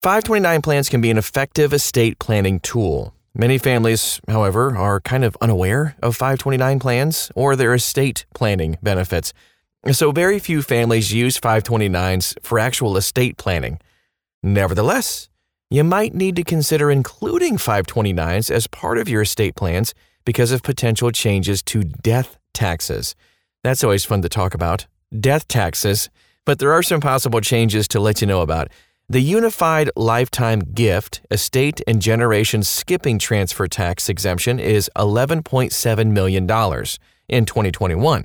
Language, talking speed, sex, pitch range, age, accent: English, 140 wpm, male, 100-135 Hz, 30-49, American